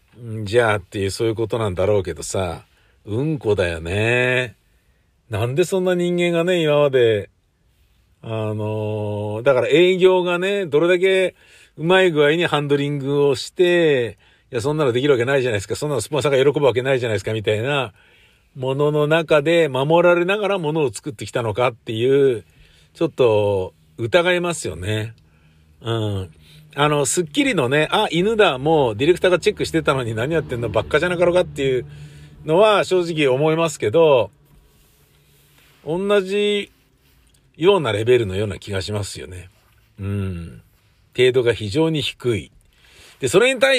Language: Japanese